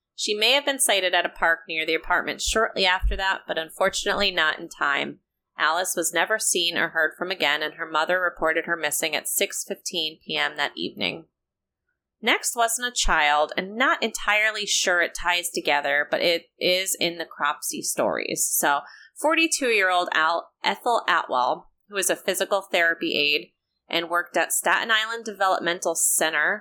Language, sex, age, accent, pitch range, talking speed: English, female, 30-49, American, 170-225 Hz, 165 wpm